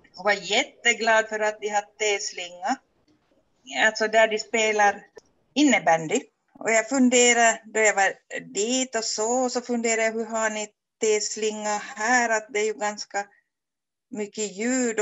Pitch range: 200-250 Hz